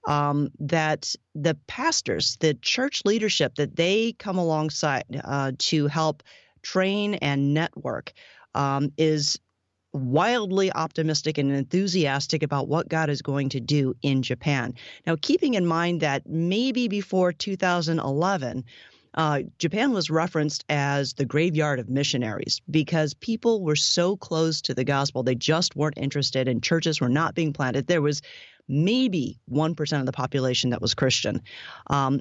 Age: 40-59